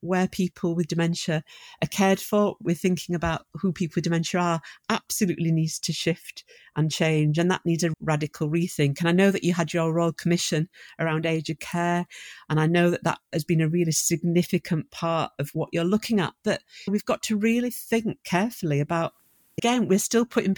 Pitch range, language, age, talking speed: 165-200 Hz, English, 50-69, 195 wpm